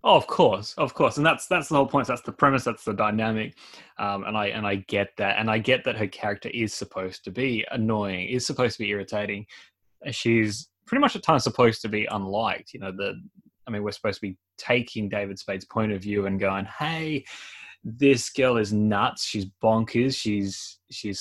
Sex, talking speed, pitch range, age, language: male, 210 wpm, 105-130 Hz, 20-39, English